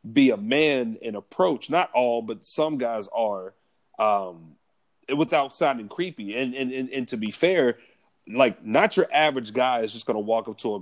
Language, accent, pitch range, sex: English, American, 115-145 Hz, male